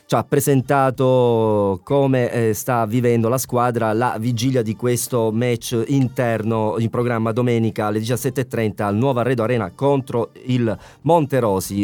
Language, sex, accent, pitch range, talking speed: Italian, male, native, 115-145 Hz, 140 wpm